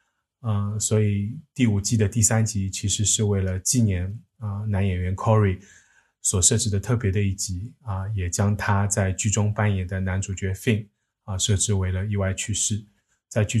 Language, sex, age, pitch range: Chinese, male, 20-39, 100-110 Hz